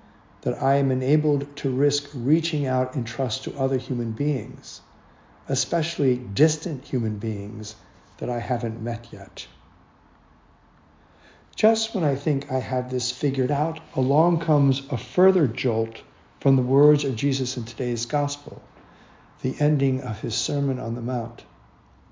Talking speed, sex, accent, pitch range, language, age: 145 wpm, male, American, 120-145 Hz, English, 60-79